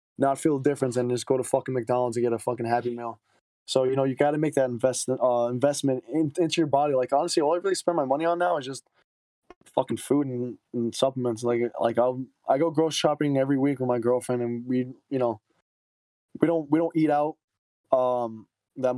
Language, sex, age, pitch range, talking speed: English, male, 20-39, 120-140 Hz, 230 wpm